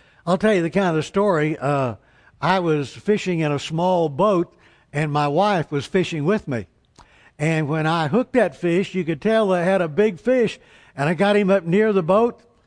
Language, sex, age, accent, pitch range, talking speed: English, male, 60-79, American, 155-210 Hz, 210 wpm